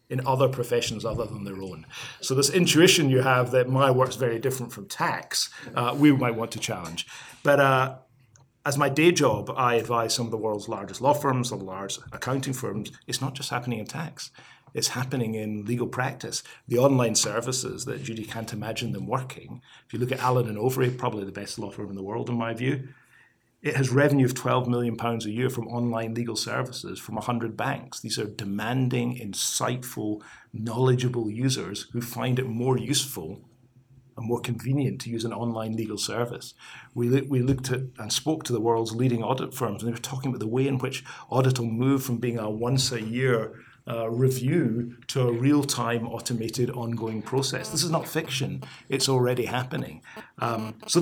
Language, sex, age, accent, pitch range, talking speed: English, male, 40-59, British, 115-135 Hz, 200 wpm